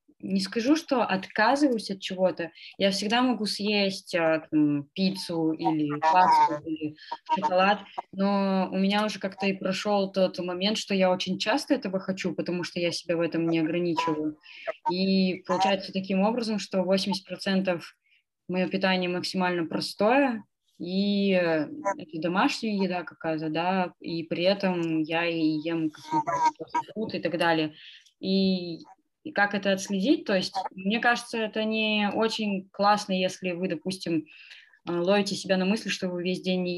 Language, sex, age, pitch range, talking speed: Russian, female, 20-39, 170-195 Hz, 140 wpm